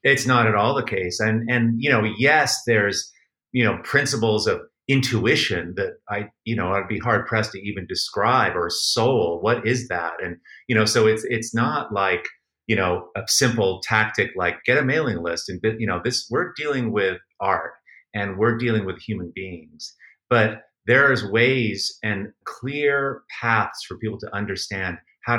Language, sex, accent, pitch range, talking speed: English, male, American, 105-125 Hz, 180 wpm